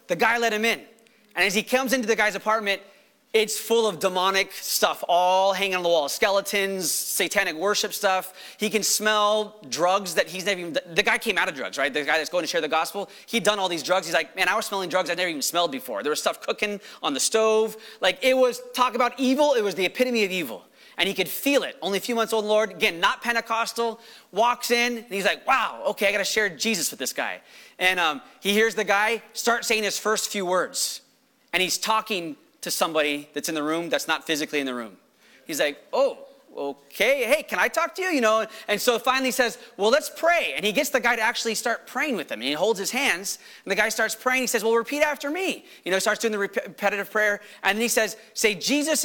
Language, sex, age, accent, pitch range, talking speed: English, male, 30-49, American, 185-235 Hz, 245 wpm